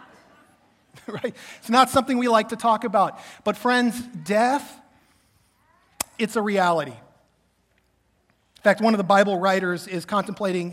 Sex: male